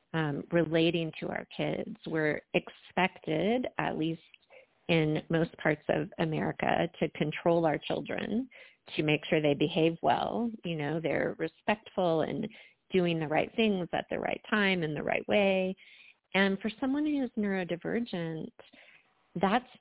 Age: 30-49